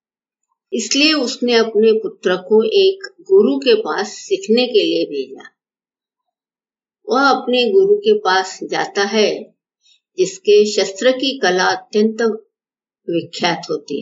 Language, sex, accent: Hindi, female, native